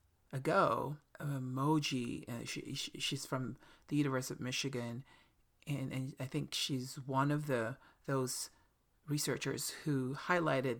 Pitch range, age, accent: 125-140 Hz, 40-59, American